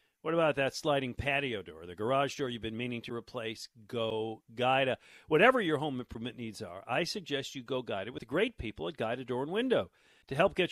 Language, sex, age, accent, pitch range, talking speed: English, male, 50-69, American, 120-195 Hz, 220 wpm